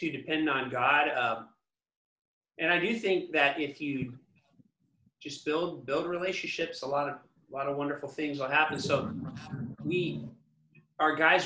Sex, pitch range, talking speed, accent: male, 125-155 Hz, 155 wpm, American